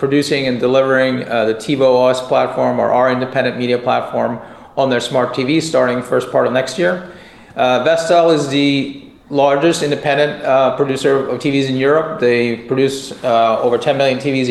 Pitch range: 125-145 Hz